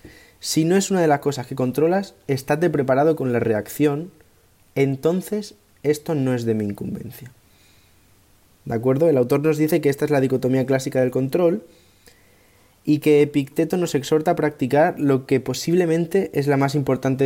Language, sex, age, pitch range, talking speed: Spanish, male, 20-39, 115-155 Hz, 170 wpm